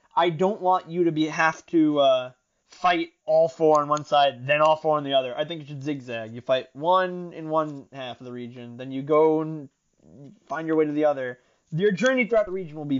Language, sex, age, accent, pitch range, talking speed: English, male, 20-39, American, 135-170 Hz, 240 wpm